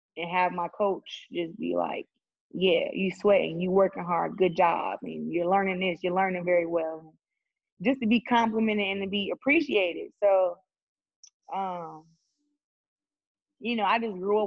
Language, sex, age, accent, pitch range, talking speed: English, female, 20-39, American, 175-200 Hz, 170 wpm